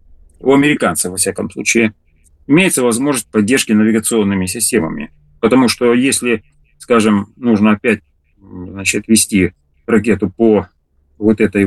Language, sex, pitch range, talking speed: Russian, male, 85-115 Hz, 110 wpm